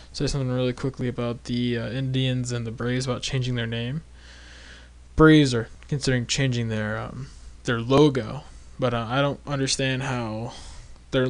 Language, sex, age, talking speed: English, male, 20-39, 160 wpm